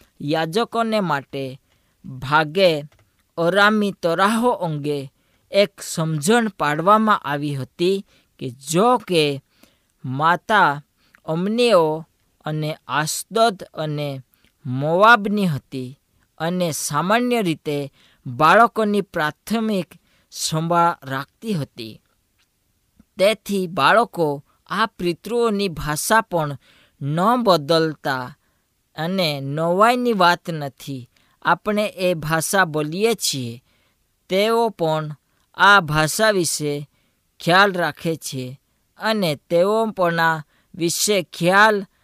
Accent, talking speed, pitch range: native, 55 wpm, 140-200 Hz